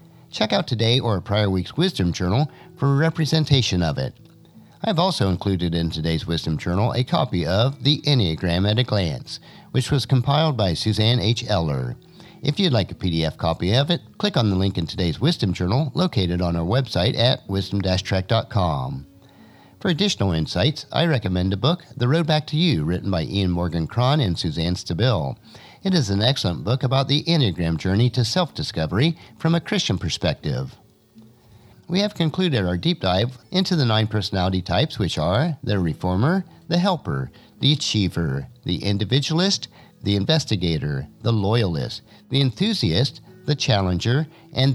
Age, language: 50-69, English